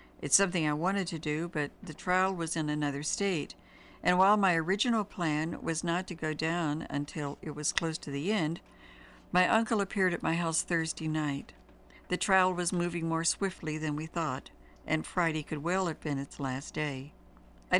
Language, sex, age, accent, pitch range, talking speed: English, female, 60-79, American, 150-180 Hz, 190 wpm